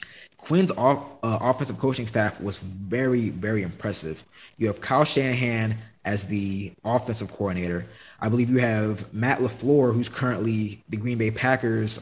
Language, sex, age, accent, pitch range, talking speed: English, male, 20-39, American, 110-125 Hz, 145 wpm